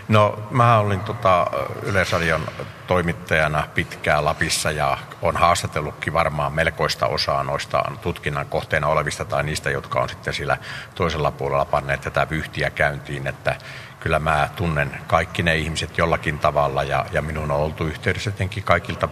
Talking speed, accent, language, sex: 140 wpm, native, Finnish, male